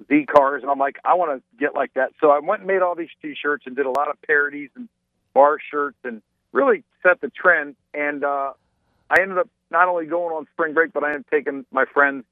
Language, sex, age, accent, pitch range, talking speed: English, male, 50-69, American, 130-150 Hz, 245 wpm